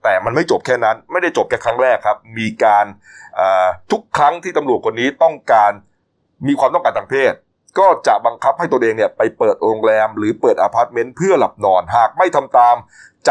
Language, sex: Thai, male